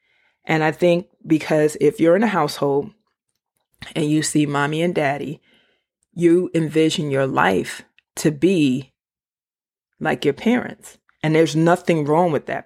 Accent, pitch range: American, 145-180 Hz